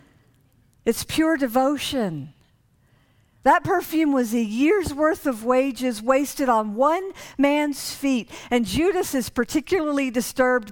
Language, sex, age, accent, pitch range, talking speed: English, female, 50-69, American, 185-290 Hz, 120 wpm